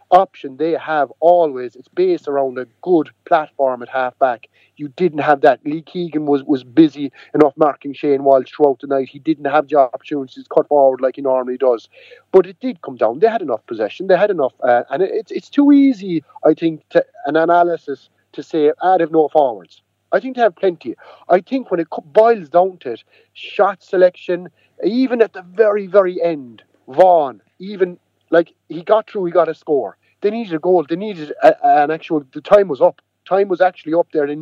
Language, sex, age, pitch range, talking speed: English, male, 30-49, 135-185 Hz, 210 wpm